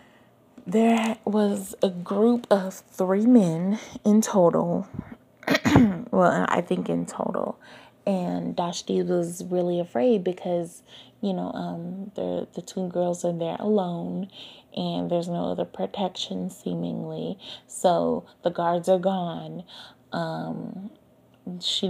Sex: female